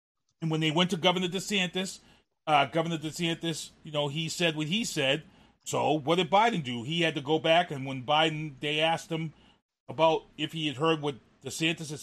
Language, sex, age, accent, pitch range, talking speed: English, male, 30-49, American, 145-185 Hz, 205 wpm